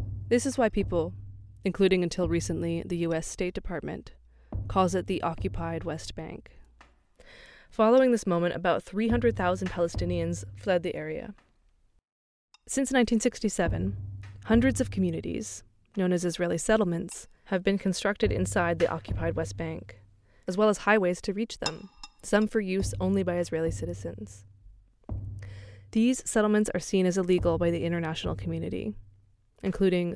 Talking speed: 135 wpm